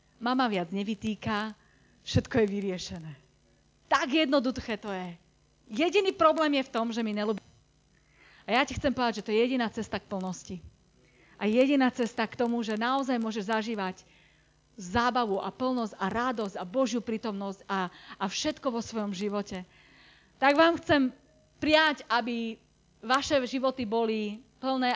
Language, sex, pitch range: Slovak, female, 205-275 Hz